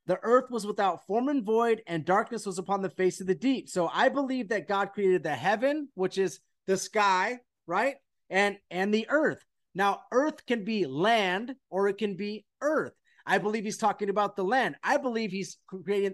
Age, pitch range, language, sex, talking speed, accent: 30-49, 185-230 Hz, English, male, 200 wpm, American